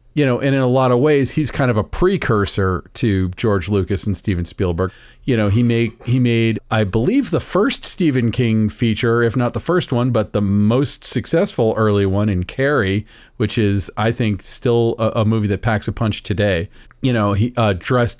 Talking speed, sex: 210 wpm, male